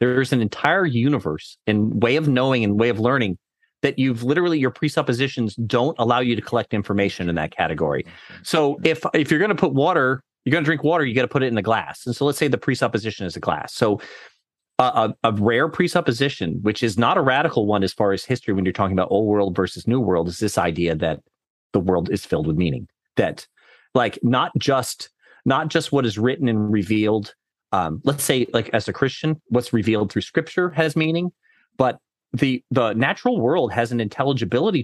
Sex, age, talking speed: male, 30-49, 210 wpm